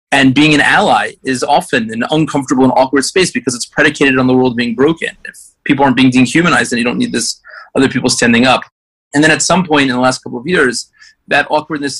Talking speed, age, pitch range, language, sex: 230 wpm, 30-49, 120-145 Hz, English, male